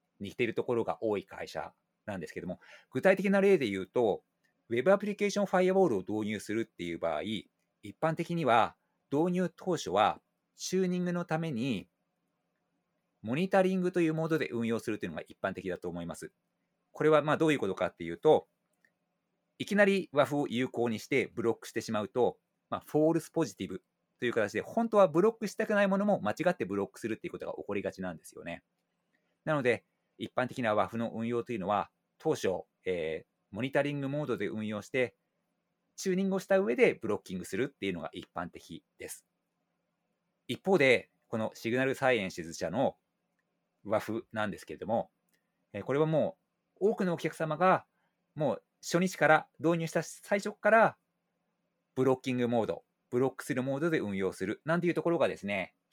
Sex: male